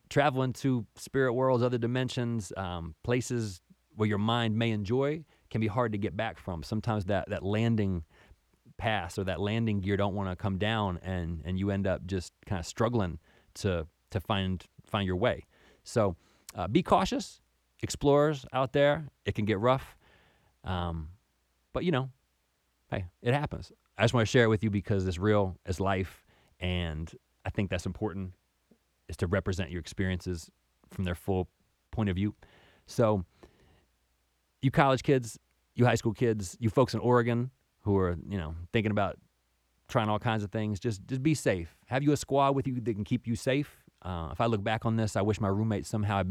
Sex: male